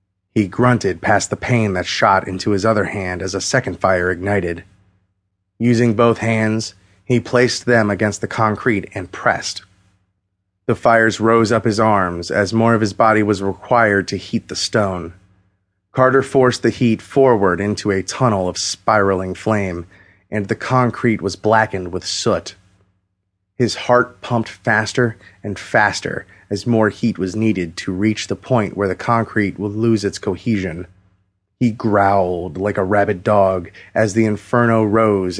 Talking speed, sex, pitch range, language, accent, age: 160 wpm, male, 95-115 Hz, English, American, 30-49